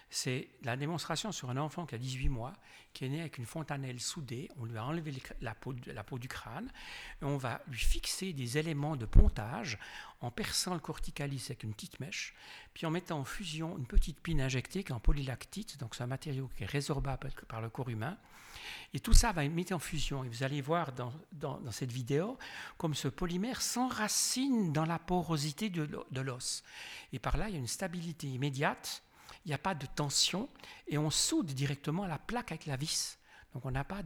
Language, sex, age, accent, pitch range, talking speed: French, male, 60-79, French, 130-160 Hz, 215 wpm